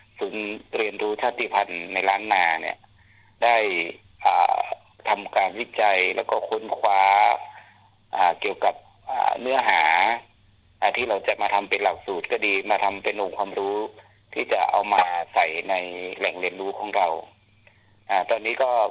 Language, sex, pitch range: Thai, male, 100-115 Hz